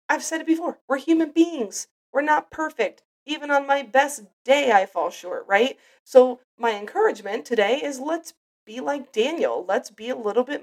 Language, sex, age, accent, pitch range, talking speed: English, female, 30-49, American, 215-280 Hz, 185 wpm